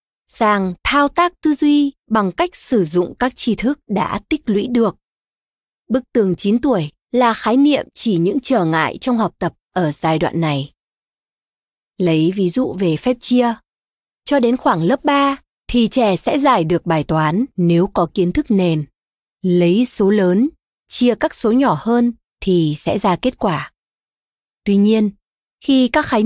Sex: female